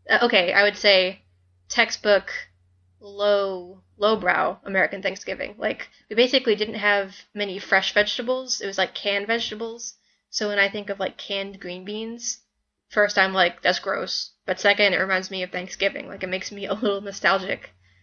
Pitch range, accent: 185-210 Hz, American